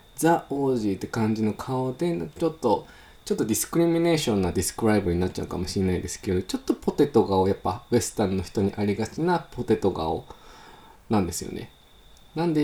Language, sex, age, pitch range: Japanese, male, 20-39, 95-140 Hz